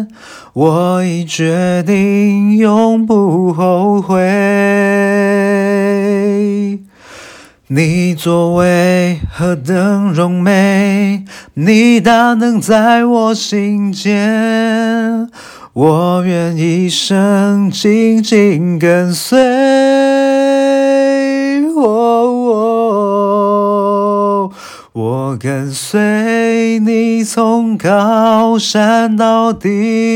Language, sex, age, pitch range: Chinese, male, 30-49, 180-225 Hz